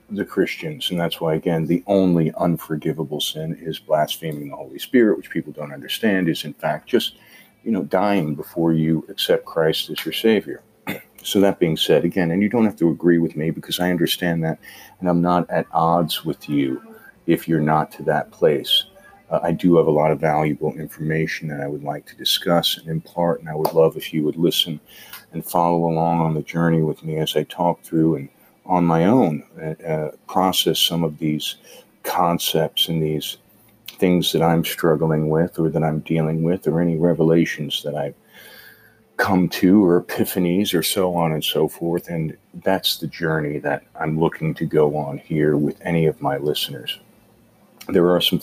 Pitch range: 80-85 Hz